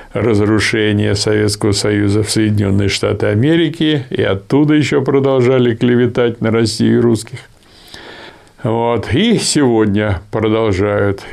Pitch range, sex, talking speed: 110-150 Hz, male, 105 wpm